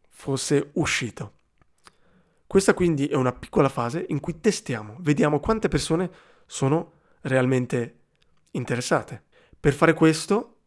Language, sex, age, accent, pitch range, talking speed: Italian, male, 20-39, native, 130-165 Hz, 110 wpm